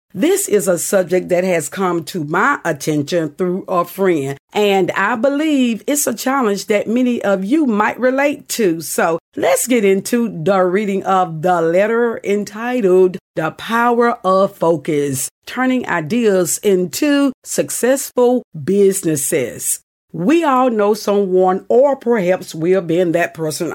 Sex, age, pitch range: female, 50-69, 175-235 Hz